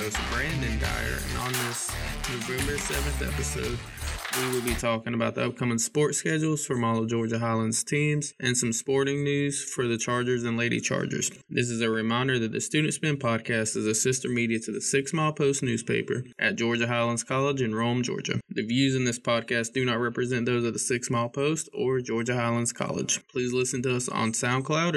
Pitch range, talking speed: 115-130 Hz, 200 wpm